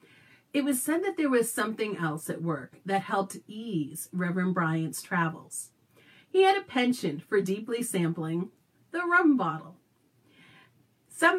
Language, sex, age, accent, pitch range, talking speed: English, female, 40-59, American, 165-240 Hz, 140 wpm